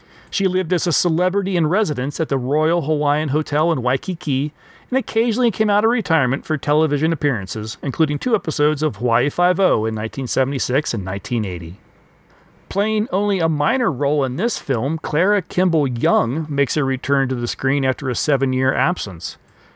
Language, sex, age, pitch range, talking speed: English, male, 40-59, 130-160 Hz, 165 wpm